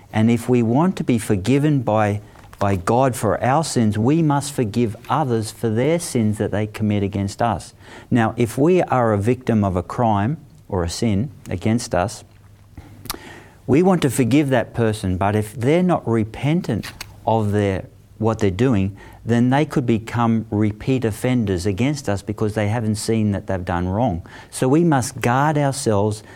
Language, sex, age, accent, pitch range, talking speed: English, male, 50-69, Australian, 105-125 Hz, 175 wpm